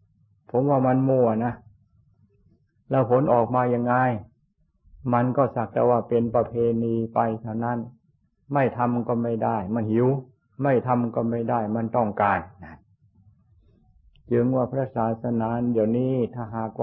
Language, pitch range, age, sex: Thai, 110-125 Hz, 60-79, male